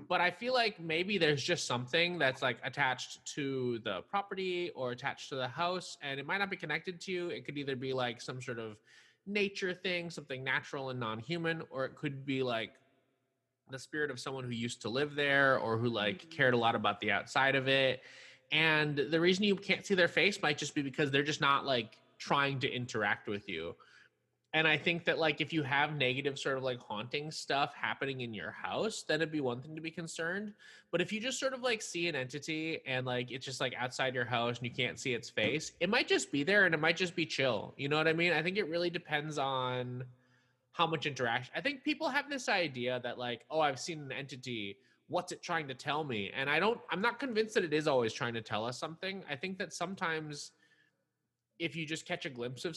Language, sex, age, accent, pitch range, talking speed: English, male, 20-39, American, 130-175 Hz, 235 wpm